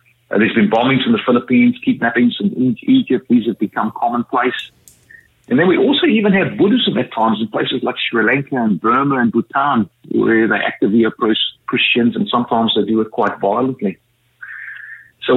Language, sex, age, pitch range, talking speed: English, male, 50-69, 115-150 Hz, 175 wpm